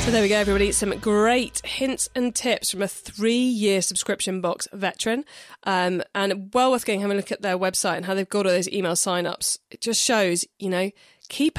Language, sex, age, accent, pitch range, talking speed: English, female, 20-39, British, 185-245 Hz, 210 wpm